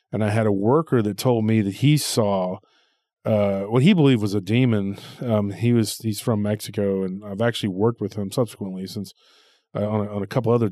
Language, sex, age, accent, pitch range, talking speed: English, male, 30-49, American, 105-125 Hz, 220 wpm